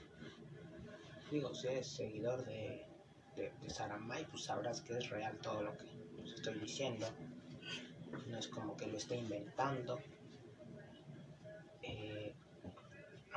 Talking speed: 120 wpm